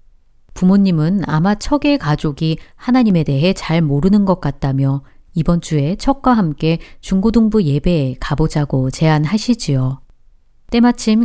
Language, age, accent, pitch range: Korean, 40-59, native, 150-215 Hz